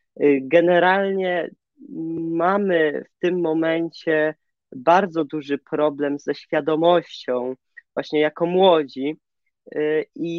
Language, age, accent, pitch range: Polish, 20-39, native, 155-185 Hz